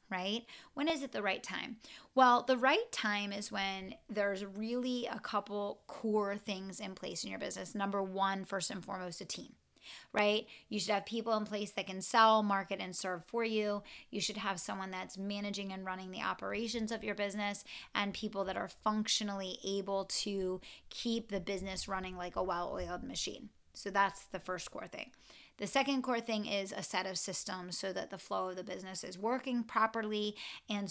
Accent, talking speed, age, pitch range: American, 195 wpm, 20-39, 190-215 Hz